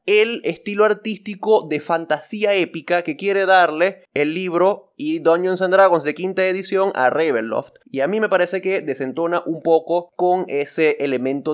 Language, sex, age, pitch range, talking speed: Spanish, male, 20-39, 155-200 Hz, 165 wpm